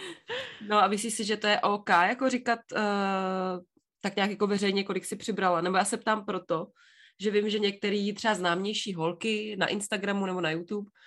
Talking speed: 190 wpm